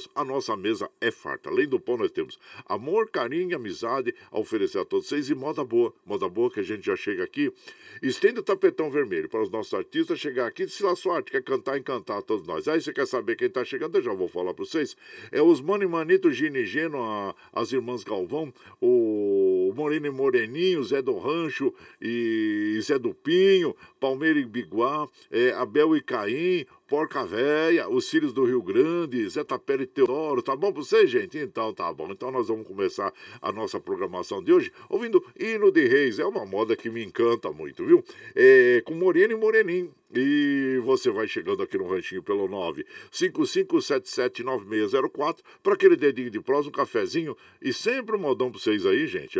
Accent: Brazilian